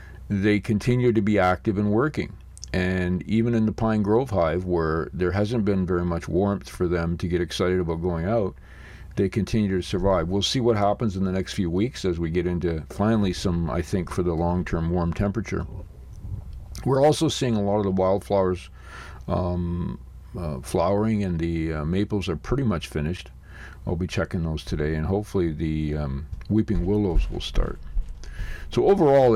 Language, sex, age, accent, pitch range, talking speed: English, male, 50-69, American, 85-100 Hz, 180 wpm